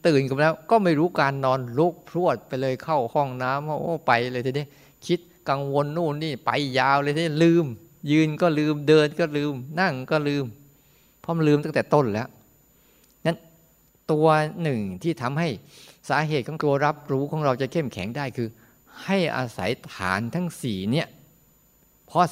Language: Thai